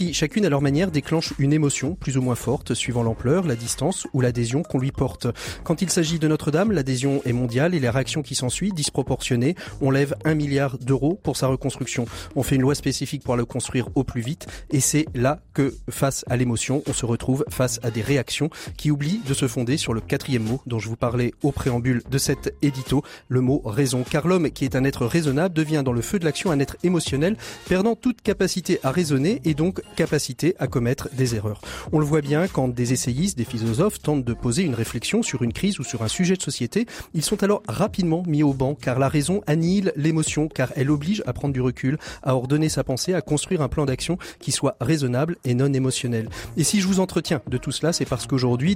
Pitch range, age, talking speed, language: 130-165 Hz, 30-49, 230 wpm, French